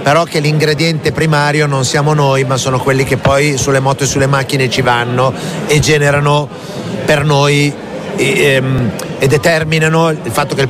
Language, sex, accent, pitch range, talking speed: Italian, male, native, 130-160 Hz, 170 wpm